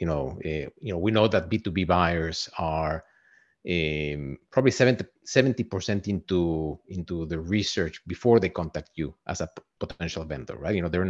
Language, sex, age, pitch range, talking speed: English, male, 50-69, 80-110 Hz, 175 wpm